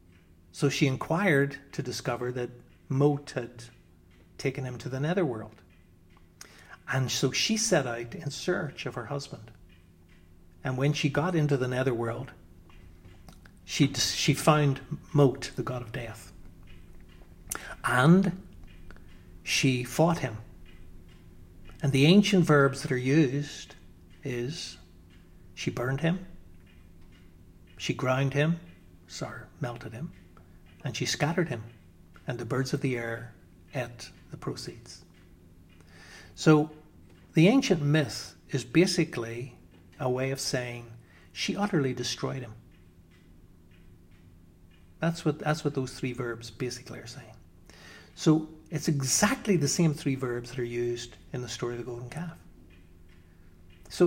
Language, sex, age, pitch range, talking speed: English, male, 60-79, 85-145 Hz, 125 wpm